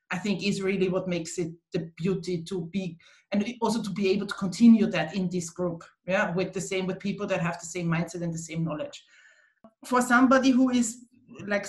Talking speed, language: 215 wpm, English